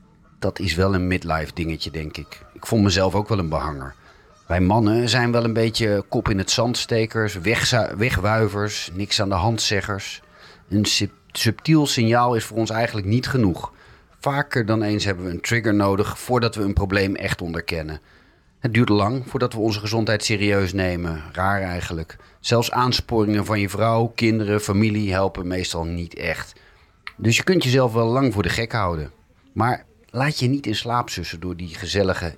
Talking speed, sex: 180 wpm, male